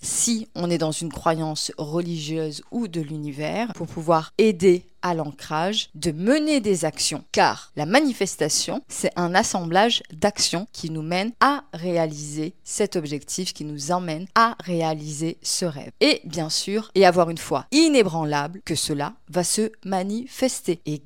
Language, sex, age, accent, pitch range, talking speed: French, female, 20-39, French, 155-195 Hz, 155 wpm